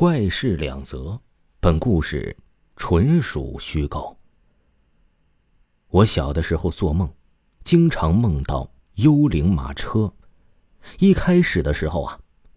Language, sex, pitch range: Chinese, male, 80-135 Hz